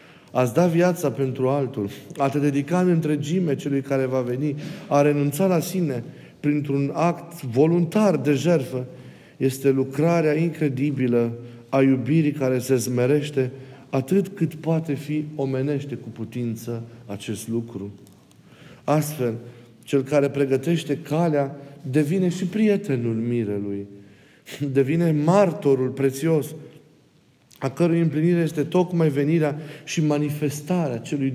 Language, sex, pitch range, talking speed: Romanian, male, 135-170 Hz, 115 wpm